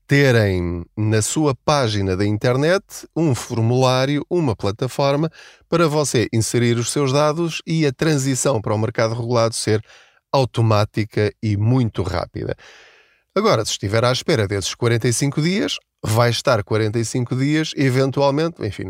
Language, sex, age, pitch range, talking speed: Portuguese, male, 20-39, 105-140 Hz, 135 wpm